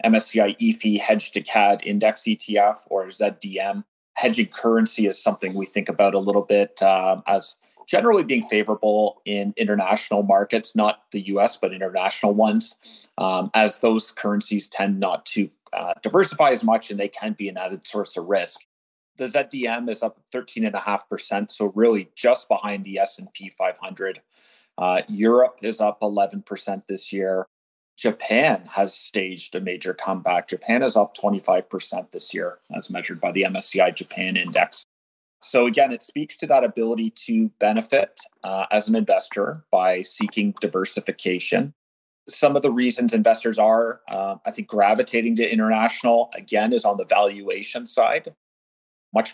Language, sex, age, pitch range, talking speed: English, male, 30-49, 95-115 Hz, 155 wpm